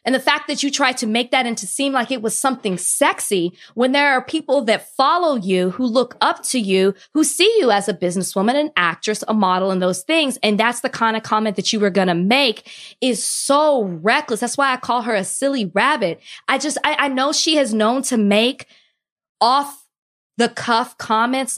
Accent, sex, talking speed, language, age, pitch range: American, female, 215 wpm, English, 20-39, 200-260 Hz